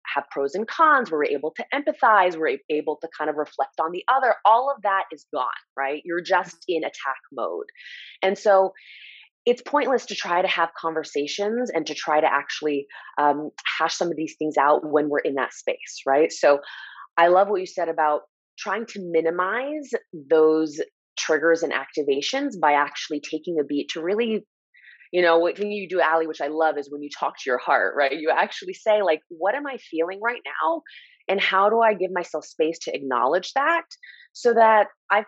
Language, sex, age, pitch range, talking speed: English, female, 20-39, 155-220 Hz, 200 wpm